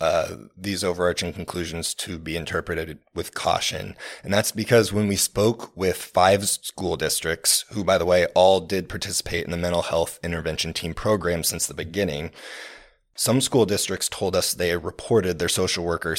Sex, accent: male, American